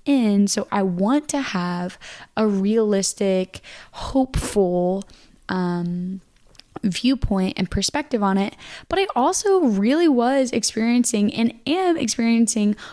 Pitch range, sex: 195-250 Hz, female